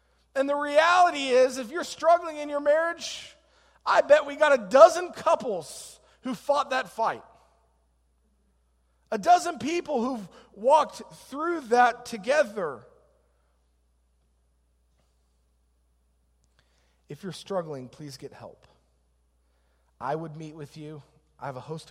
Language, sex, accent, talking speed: English, male, American, 120 wpm